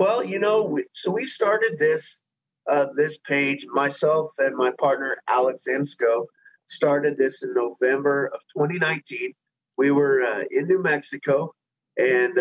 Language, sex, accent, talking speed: English, male, American, 145 wpm